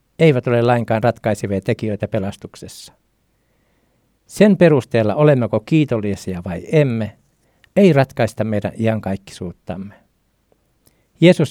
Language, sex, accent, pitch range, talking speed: Finnish, male, native, 110-150 Hz, 90 wpm